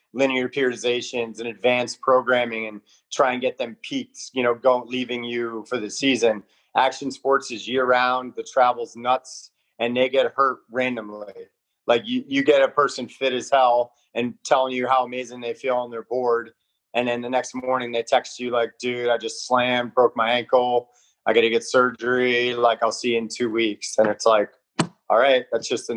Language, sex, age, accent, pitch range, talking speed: English, male, 30-49, American, 115-130 Hz, 200 wpm